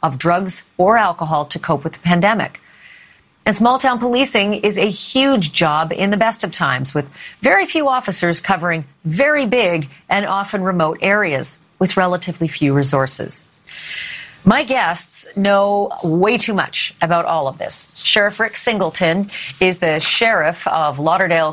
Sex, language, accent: female, English, American